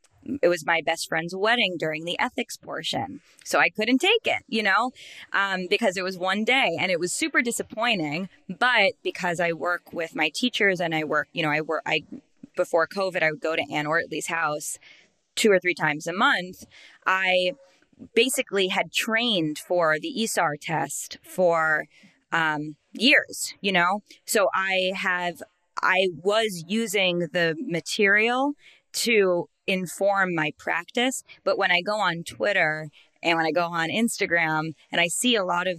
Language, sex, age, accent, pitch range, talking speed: English, female, 20-39, American, 165-205 Hz, 170 wpm